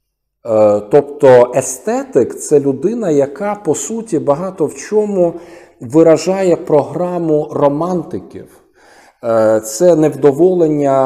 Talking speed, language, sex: 80 wpm, Ukrainian, male